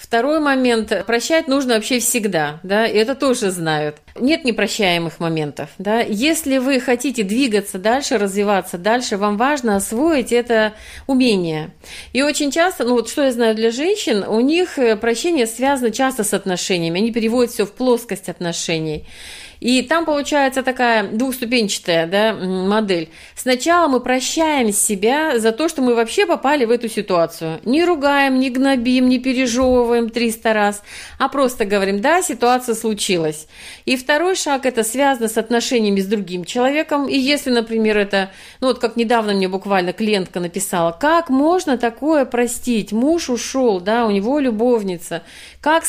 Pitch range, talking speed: 210-265 Hz, 155 wpm